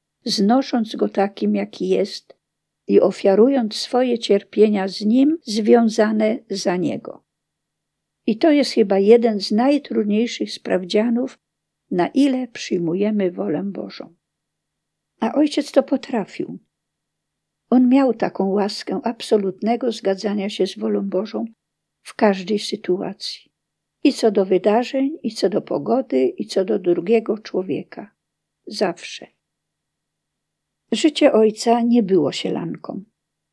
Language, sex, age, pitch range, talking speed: Polish, female, 50-69, 200-240 Hz, 115 wpm